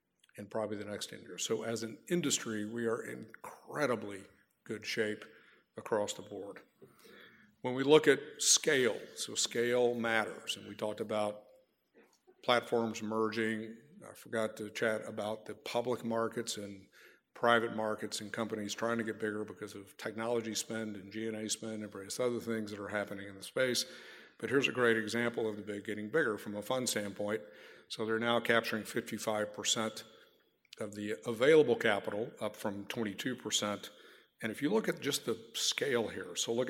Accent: American